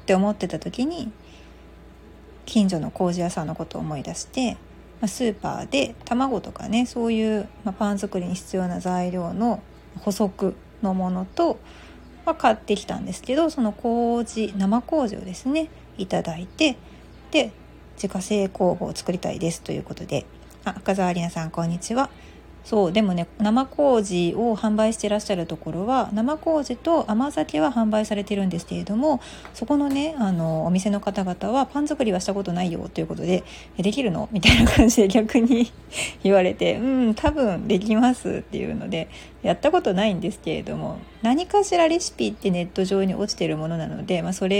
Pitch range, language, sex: 185-245 Hz, Japanese, female